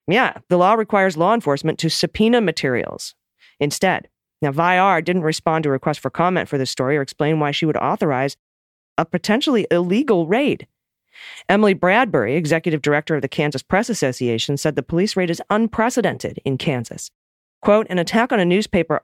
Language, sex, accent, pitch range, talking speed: English, female, American, 145-190 Hz, 175 wpm